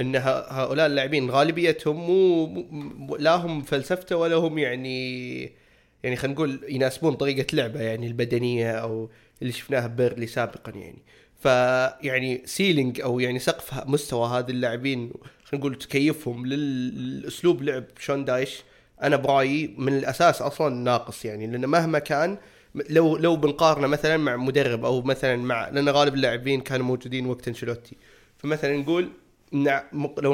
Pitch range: 120-150 Hz